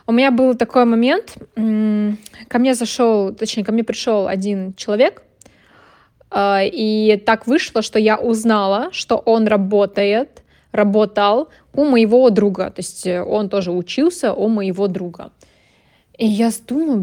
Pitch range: 190-225 Hz